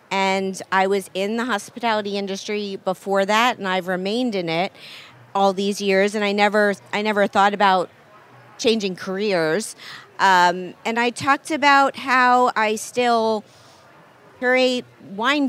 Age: 40-59